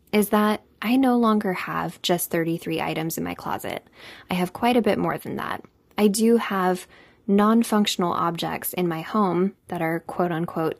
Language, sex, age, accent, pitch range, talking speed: English, female, 10-29, American, 170-215 Hz, 170 wpm